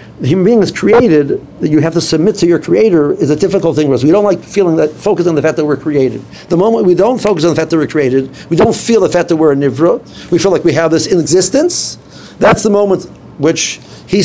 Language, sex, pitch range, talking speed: English, male, 160-205 Hz, 270 wpm